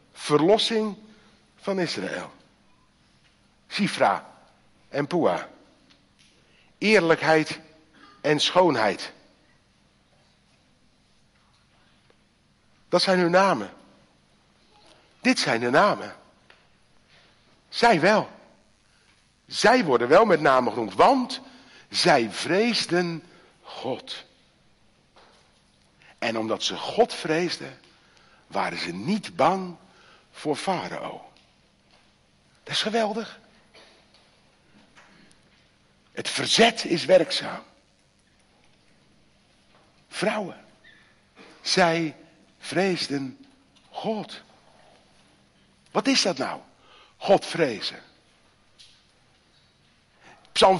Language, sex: Dutch, male